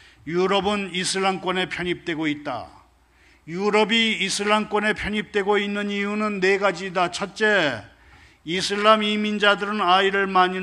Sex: male